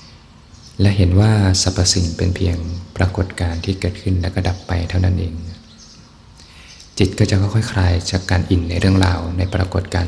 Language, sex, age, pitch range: Thai, male, 20-39, 85-95 Hz